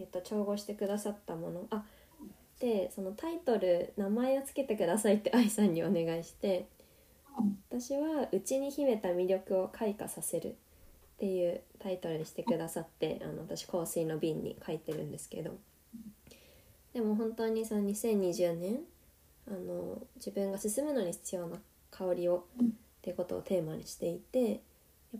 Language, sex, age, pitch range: Japanese, female, 20-39, 175-225 Hz